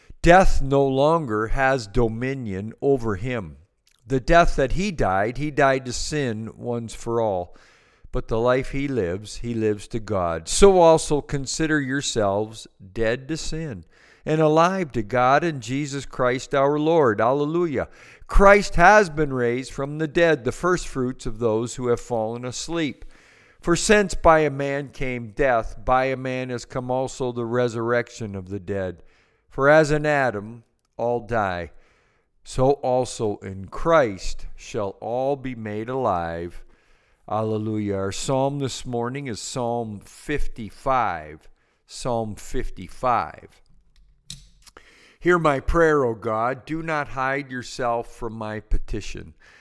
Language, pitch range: English, 110-145 Hz